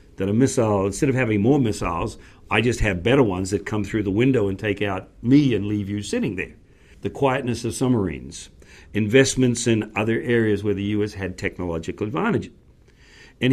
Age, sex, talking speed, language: 60-79, male, 185 wpm, English